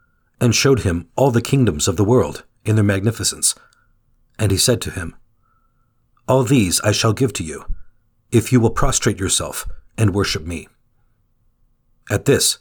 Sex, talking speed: male, 160 wpm